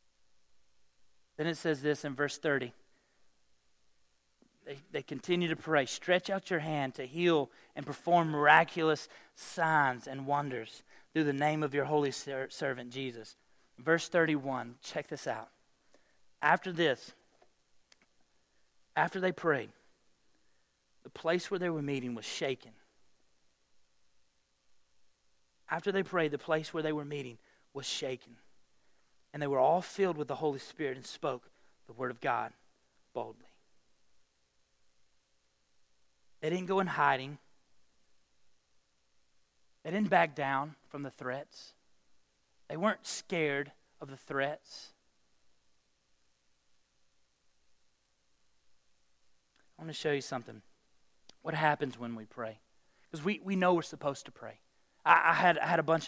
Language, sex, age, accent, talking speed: English, male, 30-49, American, 130 wpm